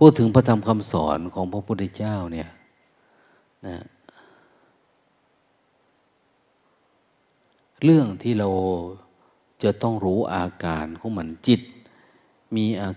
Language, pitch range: Thai, 90-110 Hz